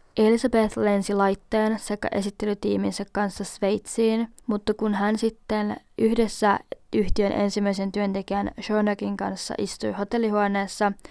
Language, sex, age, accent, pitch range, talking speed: Finnish, female, 20-39, native, 195-220 Hz, 105 wpm